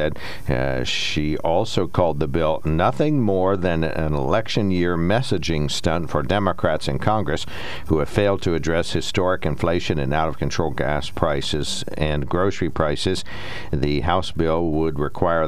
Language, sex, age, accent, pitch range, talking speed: English, male, 60-79, American, 75-95 Hz, 145 wpm